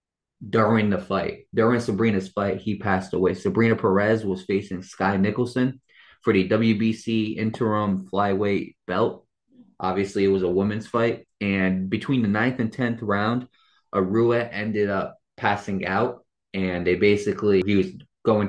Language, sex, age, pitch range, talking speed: English, male, 20-39, 95-110 Hz, 145 wpm